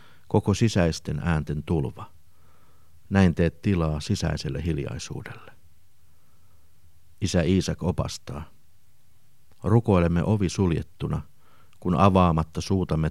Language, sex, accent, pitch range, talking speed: Finnish, male, native, 80-95 Hz, 80 wpm